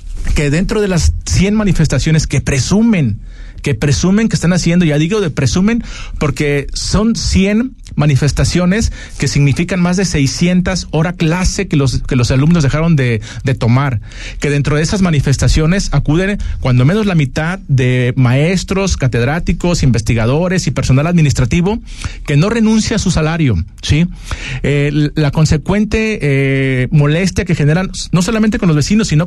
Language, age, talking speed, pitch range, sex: Spanish, 40-59, 150 wpm, 135-185 Hz, male